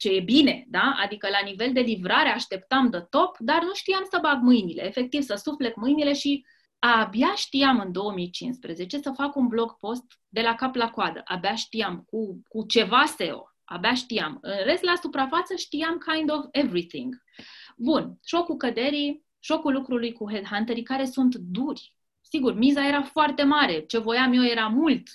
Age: 20-39